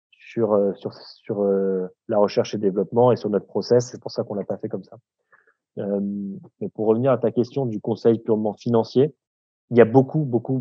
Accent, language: French, French